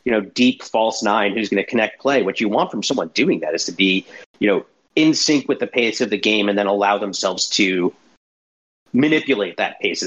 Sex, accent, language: male, American, English